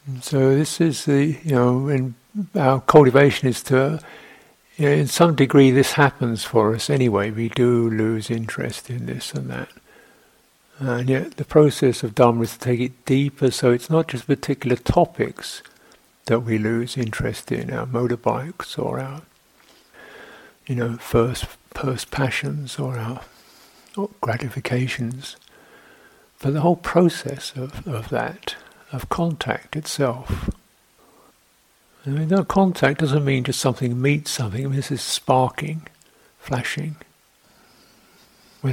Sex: male